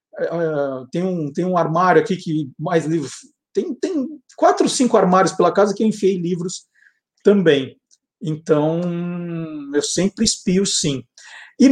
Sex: male